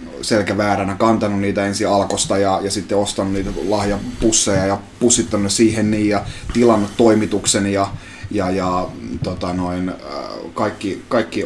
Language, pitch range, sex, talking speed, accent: Finnish, 100-130 Hz, male, 135 wpm, native